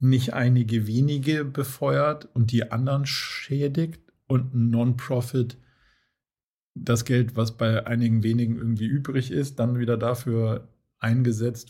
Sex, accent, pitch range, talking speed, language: male, German, 115-130 Hz, 120 wpm, German